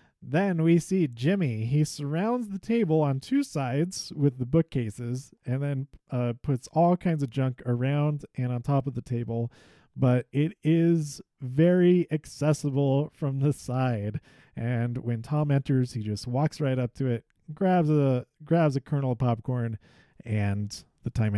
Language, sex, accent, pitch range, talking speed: English, male, American, 125-165 Hz, 160 wpm